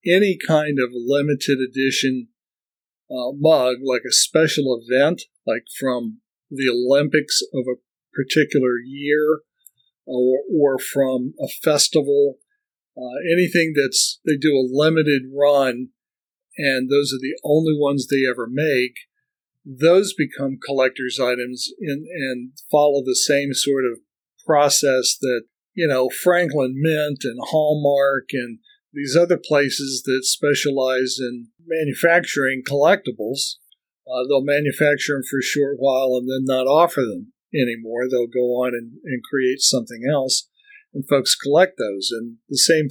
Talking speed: 135 wpm